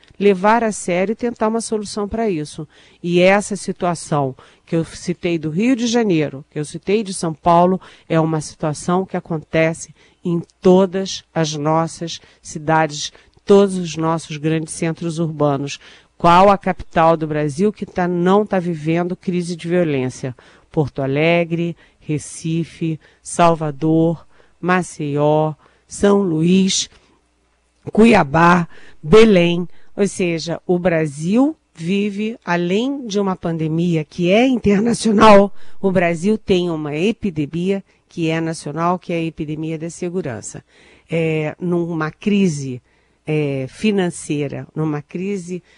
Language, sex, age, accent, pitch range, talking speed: Portuguese, female, 50-69, Brazilian, 155-195 Hz, 120 wpm